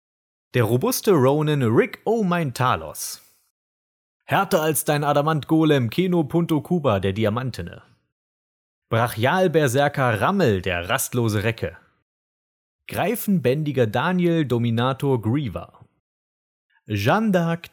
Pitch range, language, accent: 100-160 Hz, German, German